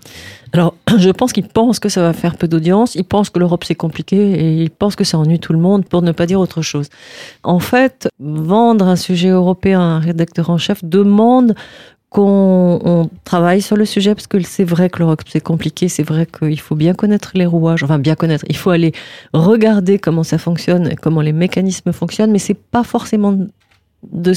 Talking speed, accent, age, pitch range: 210 wpm, French, 40-59, 165-200 Hz